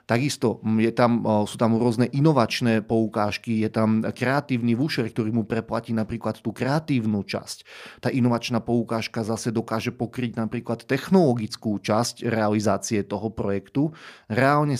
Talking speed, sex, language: 130 wpm, male, Slovak